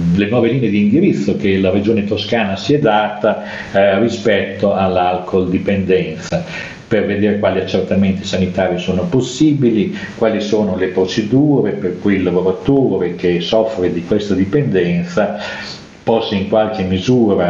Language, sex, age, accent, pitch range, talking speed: Italian, male, 40-59, native, 85-105 Hz, 135 wpm